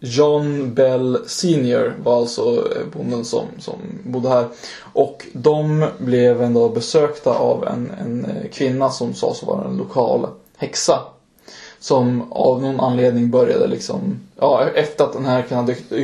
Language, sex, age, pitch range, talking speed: Swedish, male, 20-39, 125-155 Hz, 145 wpm